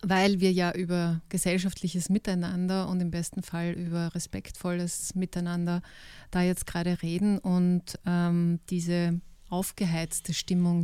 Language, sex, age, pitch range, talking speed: German, female, 30-49, 175-190 Hz, 120 wpm